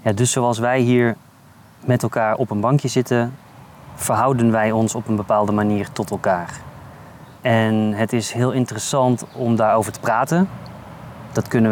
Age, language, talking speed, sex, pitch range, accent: 20-39, Dutch, 155 wpm, male, 110-130 Hz, Dutch